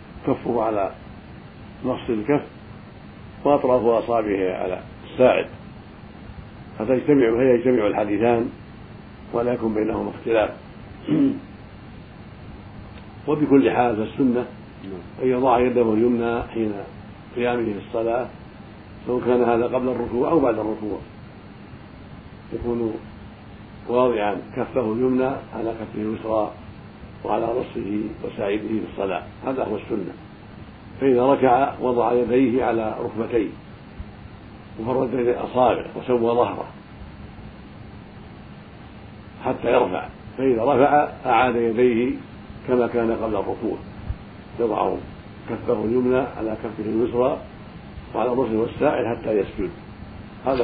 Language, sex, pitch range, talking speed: Arabic, male, 105-125 Hz, 95 wpm